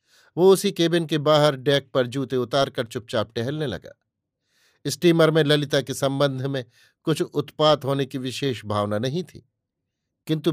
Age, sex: 50-69, male